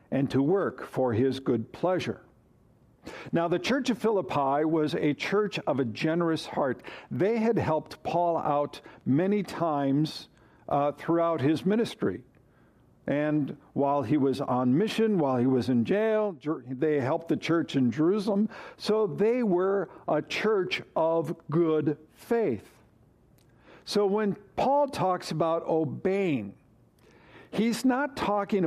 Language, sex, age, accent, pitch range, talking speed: English, male, 60-79, American, 140-190 Hz, 135 wpm